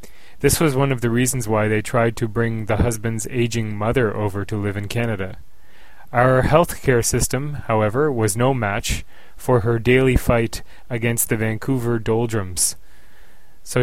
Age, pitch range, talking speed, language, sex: 30-49, 110-125 Hz, 160 wpm, English, male